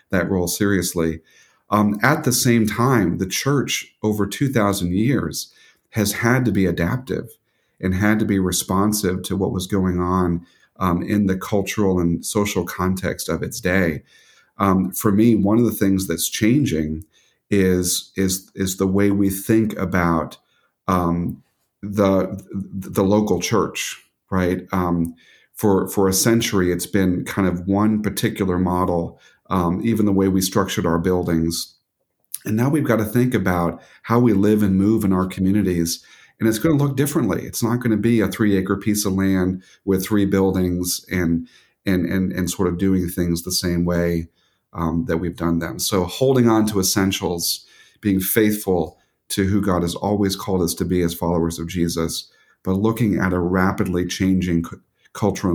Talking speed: 175 wpm